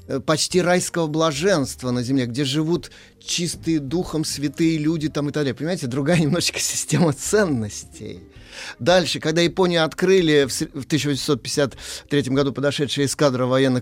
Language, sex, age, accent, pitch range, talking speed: Russian, male, 30-49, native, 115-155 Hz, 130 wpm